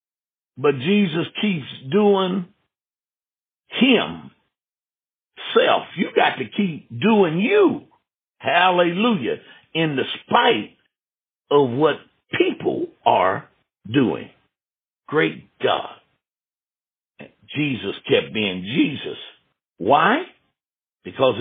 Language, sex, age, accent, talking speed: English, male, 60-79, American, 80 wpm